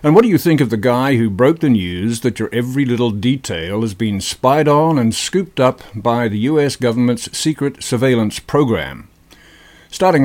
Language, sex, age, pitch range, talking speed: English, male, 50-69, 115-140 Hz, 185 wpm